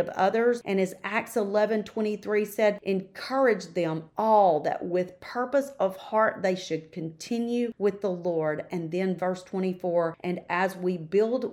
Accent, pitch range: American, 160-190 Hz